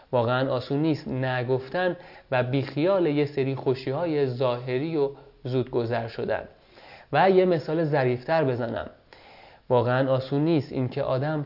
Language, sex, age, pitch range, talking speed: Persian, male, 30-49, 125-150 Hz, 125 wpm